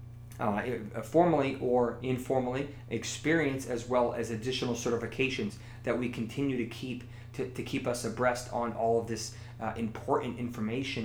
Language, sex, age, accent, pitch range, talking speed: English, male, 30-49, American, 115-125 Hz, 145 wpm